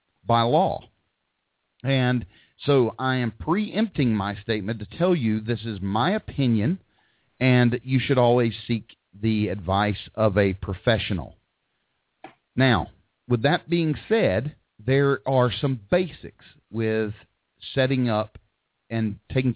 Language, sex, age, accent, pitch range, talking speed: English, male, 40-59, American, 105-135 Hz, 125 wpm